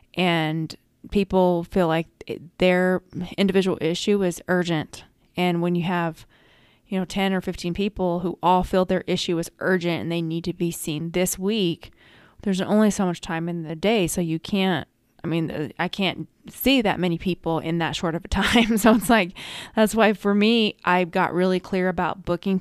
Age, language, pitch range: 20-39, English, 165-195 Hz